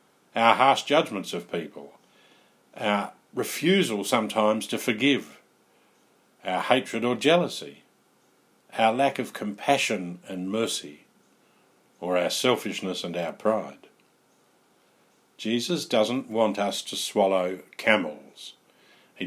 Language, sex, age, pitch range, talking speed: English, male, 50-69, 100-125 Hz, 105 wpm